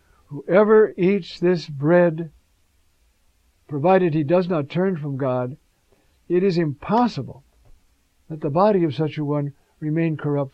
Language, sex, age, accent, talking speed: English, male, 60-79, American, 130 wpm